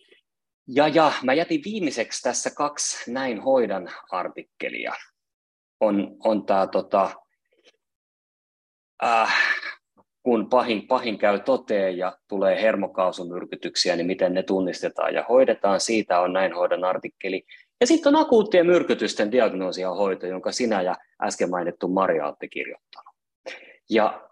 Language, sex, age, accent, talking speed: Finnish, male, 30-49, native, 120 wpm